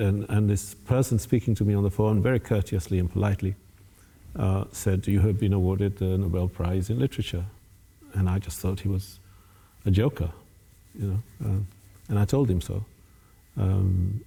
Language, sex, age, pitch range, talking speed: Danish, male, 50-69, 95-110 Hz, 175 wpm